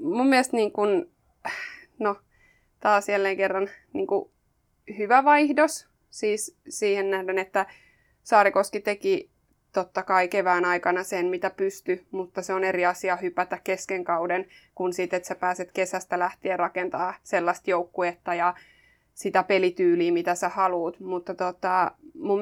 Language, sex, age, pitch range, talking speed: Finnish, female, 20-39, 180-205 Hz, 135 wpm